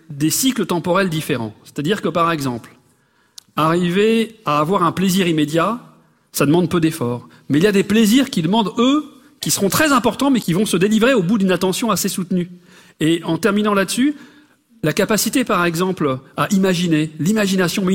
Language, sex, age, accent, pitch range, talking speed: French, male, 40-59, French, 165-215 Hz, 180 wpm